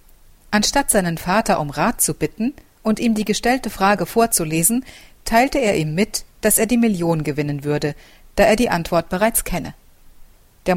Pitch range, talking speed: 155-210 Hz, 165 wpm